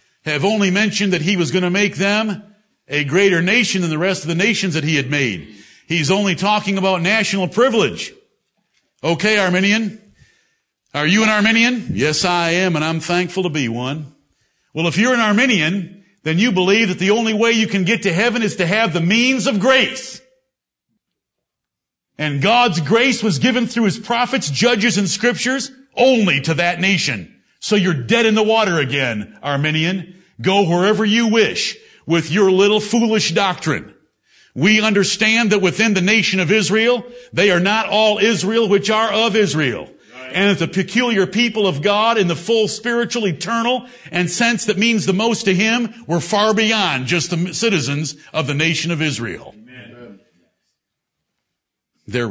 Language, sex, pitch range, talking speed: English, male, 165-220 Hz, 170 wpm